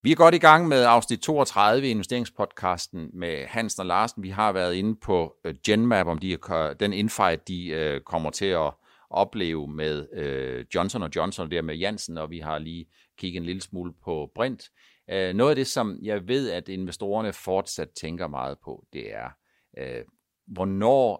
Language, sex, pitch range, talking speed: Danish, male, 90-120 Hz, 175 wpm